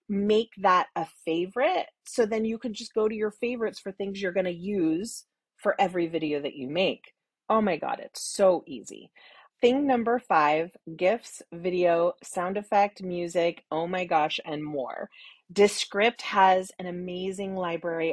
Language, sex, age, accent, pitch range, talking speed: English, female, 30-49, American, 170-215 Hz, 160 wpm